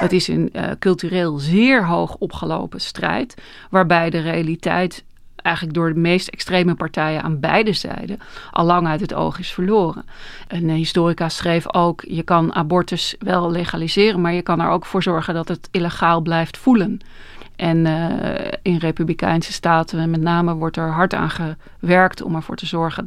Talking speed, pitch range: 170 wpm, 165-195 Hz